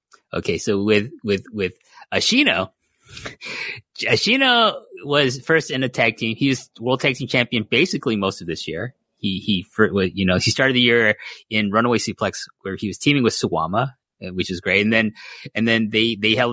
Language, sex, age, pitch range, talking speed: English, male, 30-49, 105-145 Hz, 185 wpm